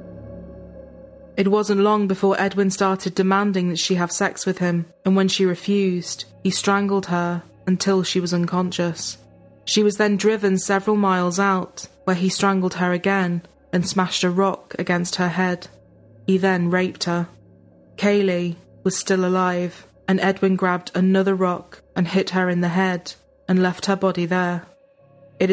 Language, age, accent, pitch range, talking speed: English, 20-39, British, 180-195 Hz, 160 wpm